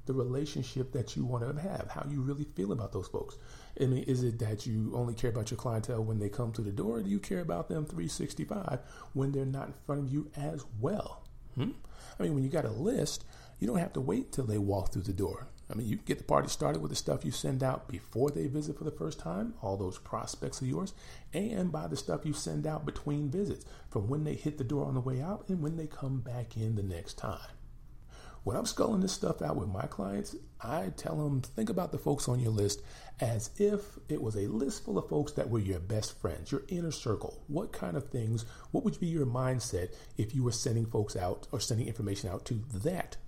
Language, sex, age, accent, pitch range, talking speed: English, male, 40-59, American, 110-145 Hz, 245 wpm